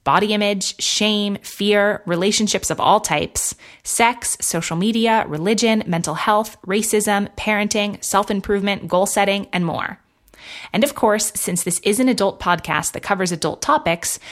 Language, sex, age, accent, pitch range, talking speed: English, female, 20-39, American, 185-230 Hz, 145 wpm